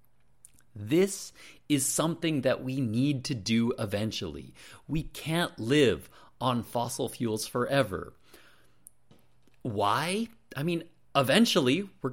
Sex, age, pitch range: male, 30-49, 115-165 Hz